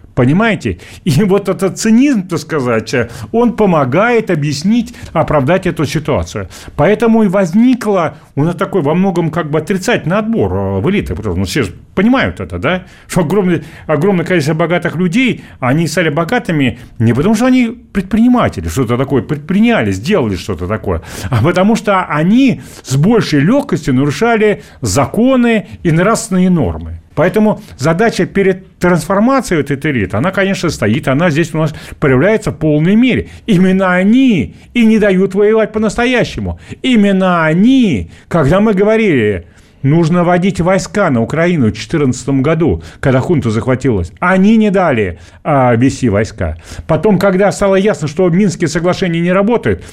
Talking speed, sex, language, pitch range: 140 wpm, male, Russian, 125-200 Hz